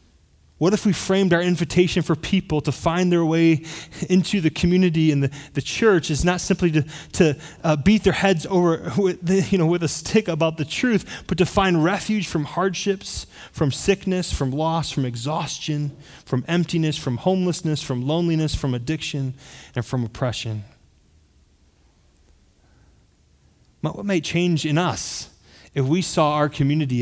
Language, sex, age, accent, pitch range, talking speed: English, male, 20-39, American, 120-170 Hz, 160 wpm